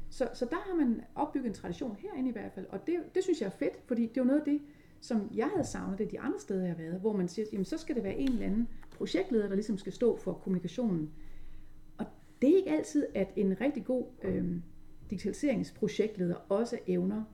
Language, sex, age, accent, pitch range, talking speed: Danish, female, 30-49, native, 185-255 Hz, 235 wpm